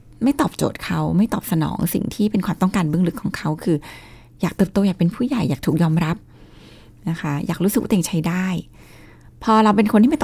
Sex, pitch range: female, 170-225 Hz